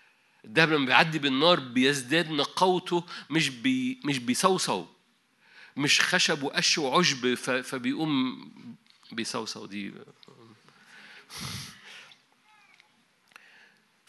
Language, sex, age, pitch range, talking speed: Arabic, male, 50-69, 135-185 Hz, 70 wpm